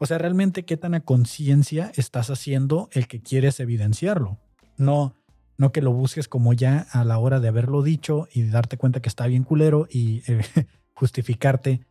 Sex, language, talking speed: male, Spanish, 180 wpm